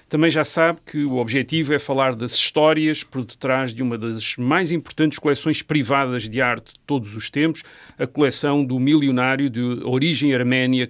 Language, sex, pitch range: Portuguese, male, 125-155 Hz